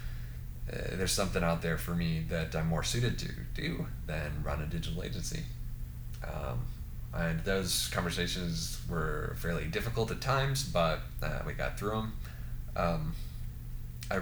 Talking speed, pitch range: 150 wpm, 75-100 Hz